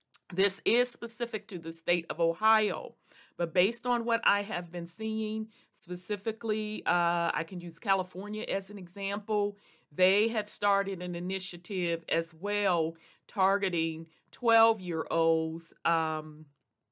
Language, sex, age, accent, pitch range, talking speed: English, female, 40-59, American, 165-200 Hz, 125 wpm